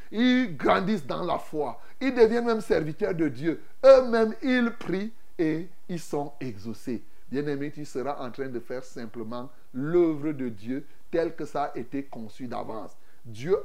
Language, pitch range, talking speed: French, 135-200 Hz, 165 wpm